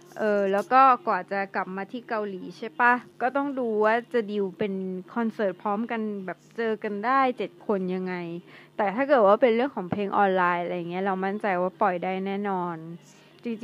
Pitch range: 195-240 Hz